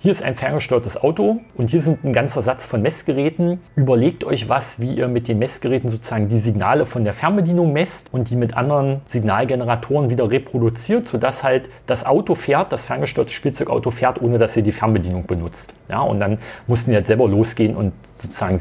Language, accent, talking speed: German, German, 185 wpm